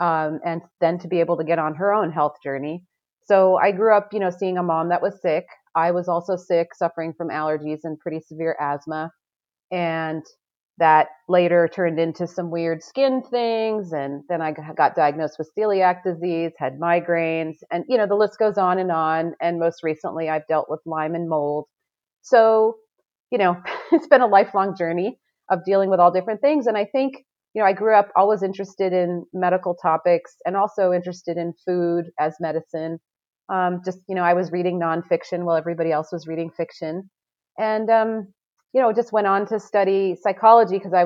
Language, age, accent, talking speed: English, 30-49, American, 195 wpm